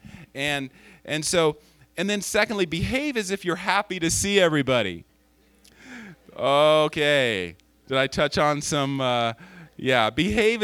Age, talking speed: 40-59, 130 wpm